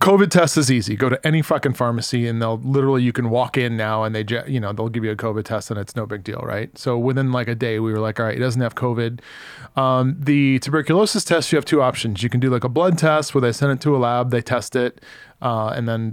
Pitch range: 120-145 Hz